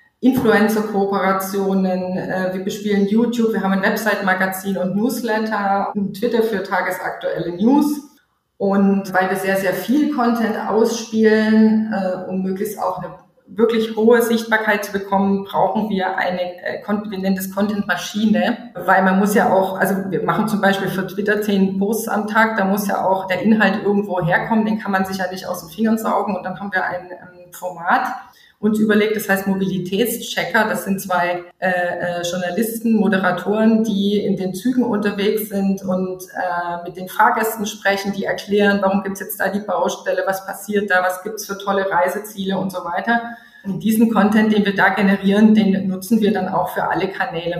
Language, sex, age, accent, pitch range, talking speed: German, female, 20-39, German, 185-215 Hz, 175 wpm